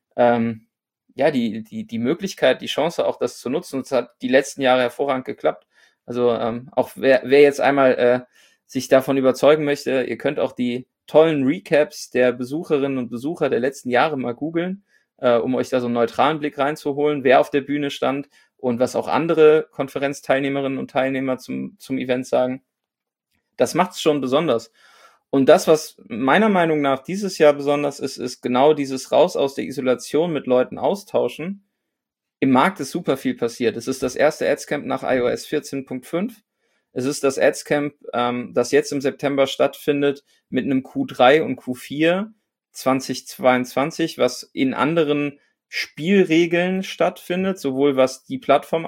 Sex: male